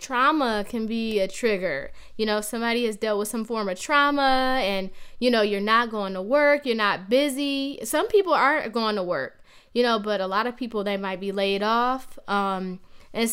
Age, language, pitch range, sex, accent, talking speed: 10-29, English, 200-245 Hz, female, American, 205 wpm